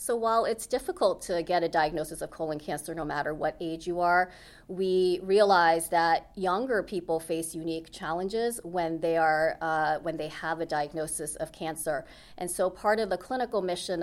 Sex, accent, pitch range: female, American, 165-195 Hz